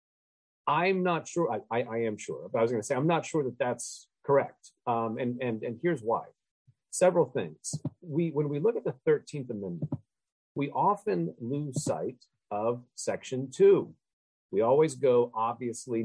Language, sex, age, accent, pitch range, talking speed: English, male, 40-59, American, 110-160 Hz, 175 wpm